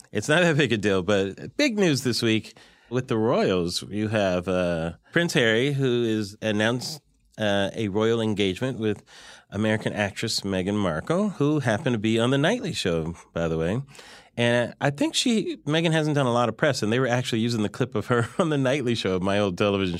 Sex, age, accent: male, 30-49, American